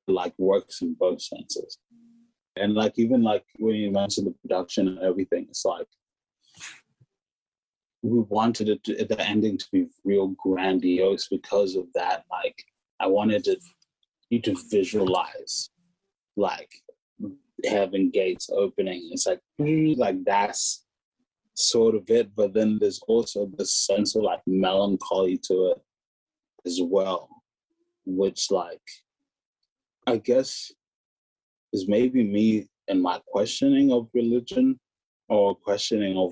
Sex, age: male, 30-49